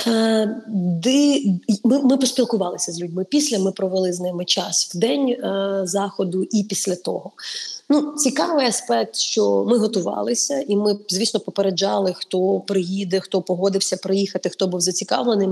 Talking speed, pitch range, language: 130 wpm, 190-230 Hz, Ukrainian